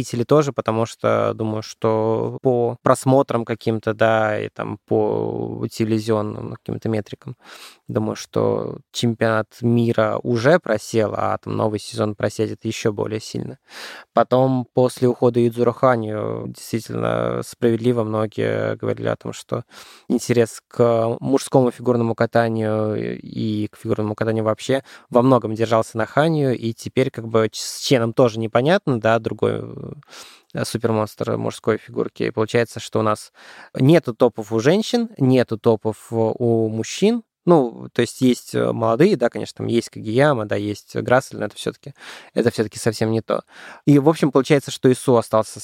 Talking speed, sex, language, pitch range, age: 145 wpm, male, Russian, 110-130 Hz, 20-39